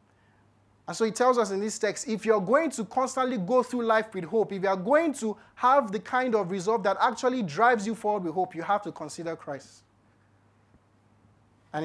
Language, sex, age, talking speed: English, male, 30-49, 210 wpm